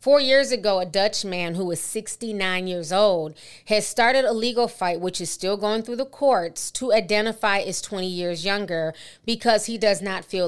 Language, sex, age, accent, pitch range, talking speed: English, female, 30-49, American, 175-225 Hz, 195 wpm